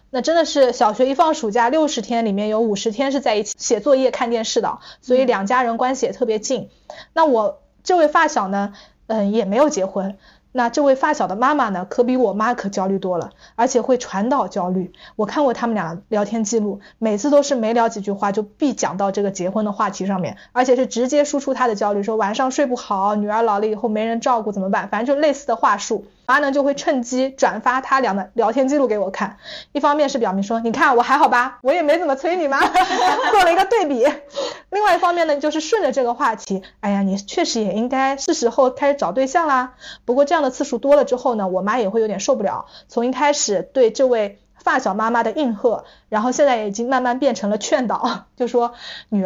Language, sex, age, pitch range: Chinese, female, 20-39, 210-280 Hz